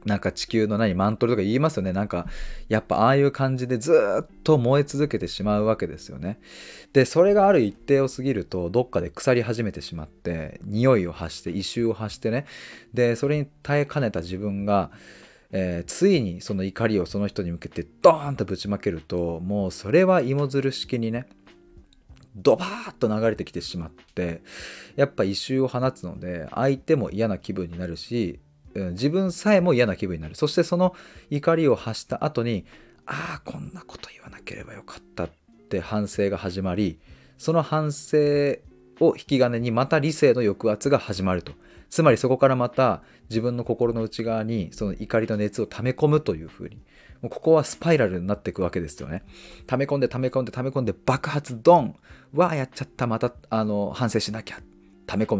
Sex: male